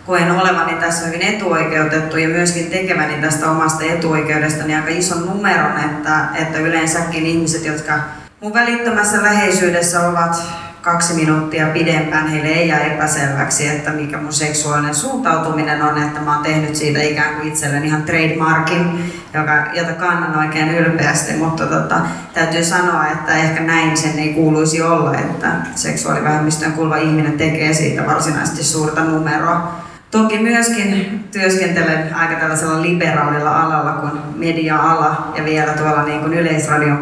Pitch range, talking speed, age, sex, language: 150-170 Hz, 140 wpm, 30-49, female, Finnish